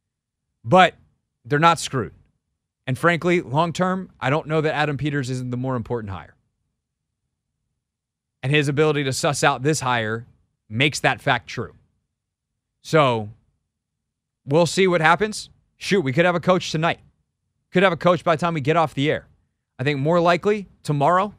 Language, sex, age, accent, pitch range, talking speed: English, male, 30-49, American, 120-155 Hz, 165 wpm